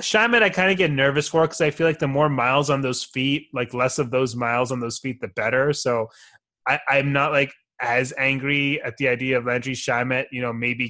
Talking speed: 230 wpm